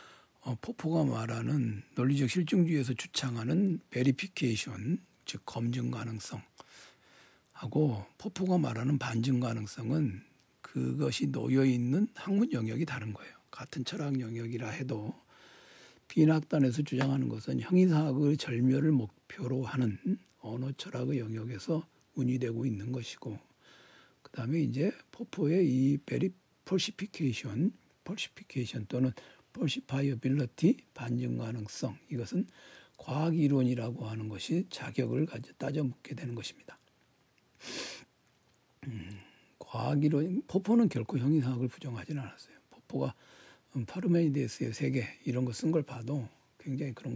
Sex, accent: male, native